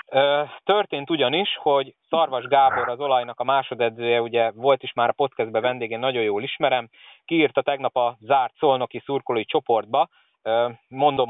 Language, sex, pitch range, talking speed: Hungarian, male, 120-145 Hz, 145 wpm